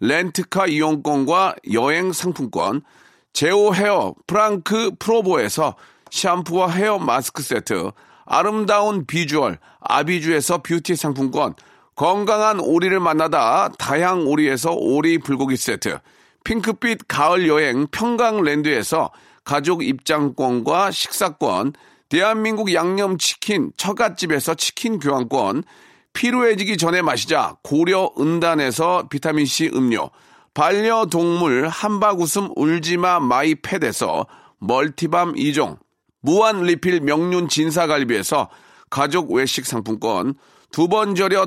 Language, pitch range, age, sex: Korean, 150-200 Hz, 40-59, male